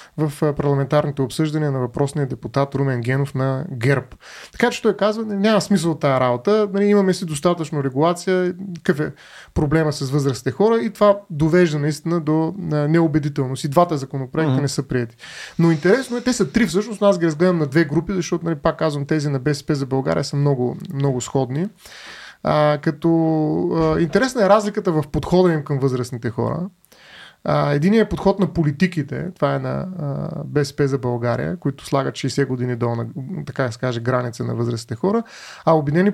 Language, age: Bulgarian, 20-39